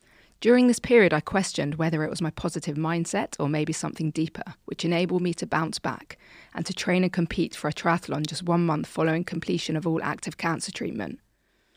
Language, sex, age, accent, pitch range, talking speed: English, female, 20-39, British, 160-200 Hz, 200 wpm